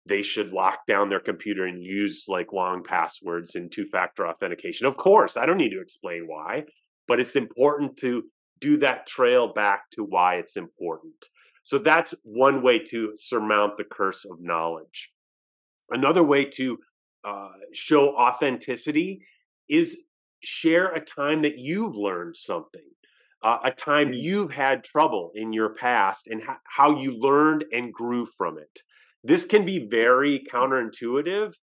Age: 30-49